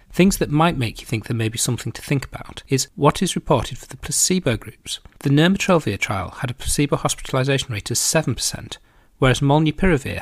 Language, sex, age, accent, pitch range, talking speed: English, male, 40-59, British, 110-150 Hz, 195 wpm